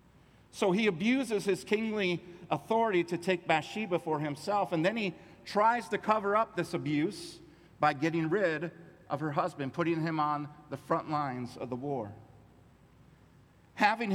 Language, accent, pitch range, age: English, American, 140-180 Hz, 50-69